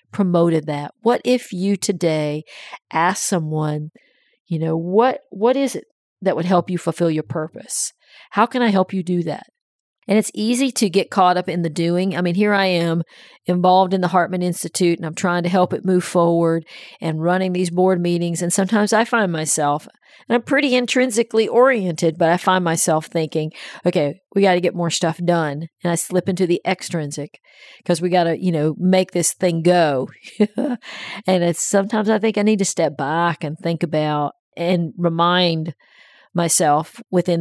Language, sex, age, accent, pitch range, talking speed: English, female, 50-69, American, 165-190 Hz, 190 wpm